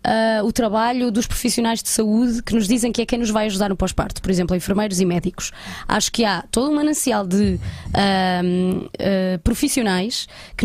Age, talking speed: 20-39, 175 wpm